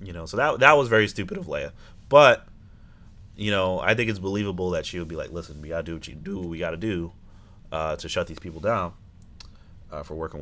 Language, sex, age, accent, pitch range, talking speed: English, male, 30-49, American, 85-105 Hz, 235 wpm